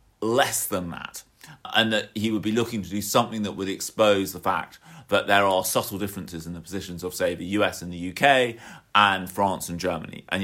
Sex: male